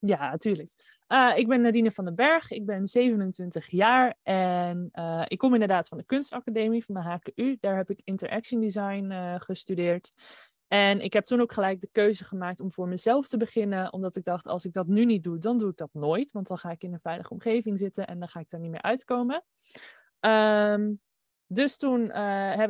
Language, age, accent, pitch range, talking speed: Dutch, 20-39, Dutch, 175-220 Hz, 215 wpm